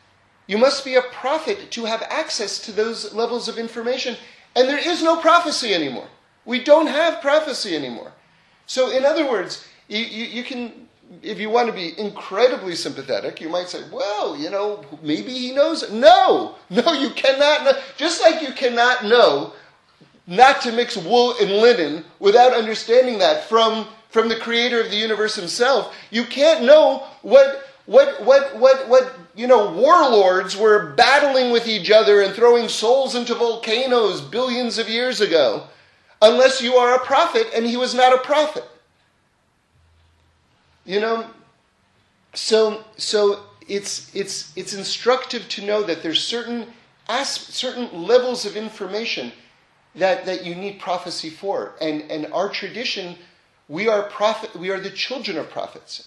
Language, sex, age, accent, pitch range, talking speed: English, male, 30-49, American, 200-260 Hz, 160 wpm